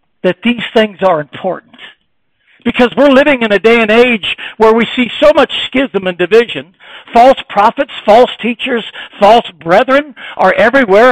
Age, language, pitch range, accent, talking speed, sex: 60-79, English, 185-250 Hz, American, 155 wpm, male